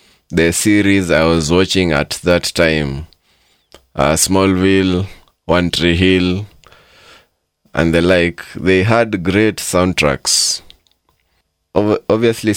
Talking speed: 100 wpm